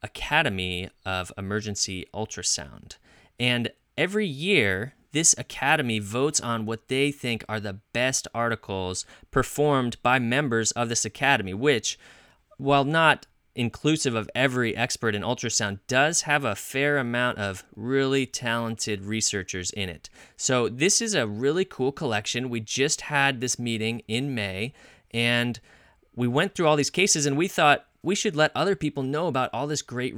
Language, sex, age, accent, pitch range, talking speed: English, male, 30-49, American, 110-145 Hz, 155 wpm